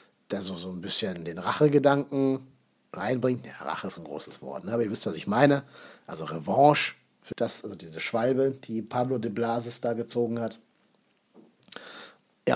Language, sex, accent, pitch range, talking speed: German, male, German, 115-155 Hz, 170 wpm